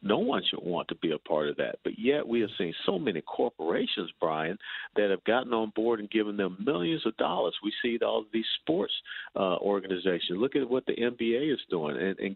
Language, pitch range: English, 90-115 Hz